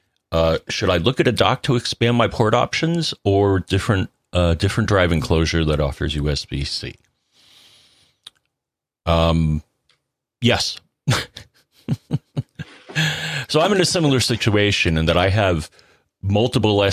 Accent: American